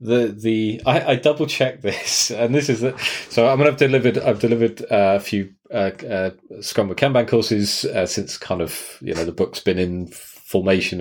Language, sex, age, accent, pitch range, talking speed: English, male, 30-49, British, 100-130 Hz, 205 wpm